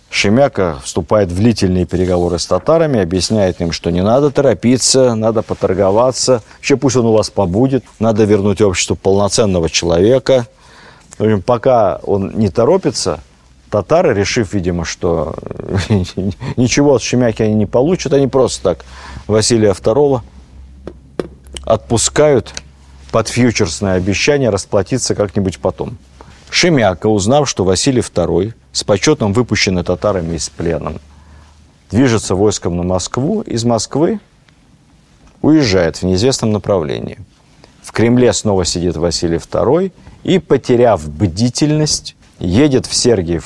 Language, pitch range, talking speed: Russian, 90-125 Hz, 120 wpm